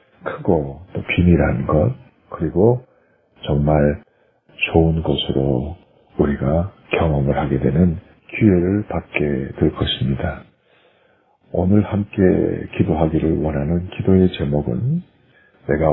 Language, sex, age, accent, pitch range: Korean, male, 50-69, native, 75-105 Hz